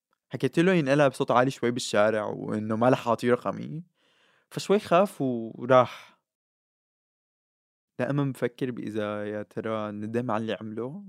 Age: 20-39